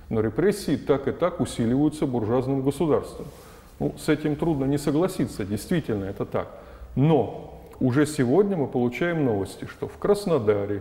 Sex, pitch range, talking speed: male, 115-160 Hz, 145 wpm